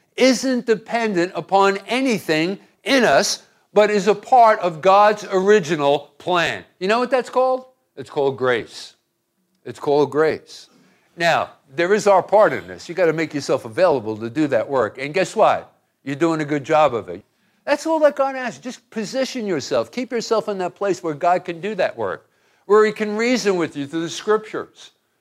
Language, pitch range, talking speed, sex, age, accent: English, 160-215 Hz, 190 wpm, male, 50-69, American